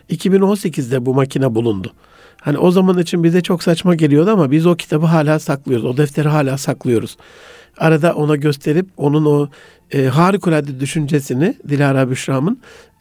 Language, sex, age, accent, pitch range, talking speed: Turkish, male, 60-79, native, 135-175 Hz, 145 wpm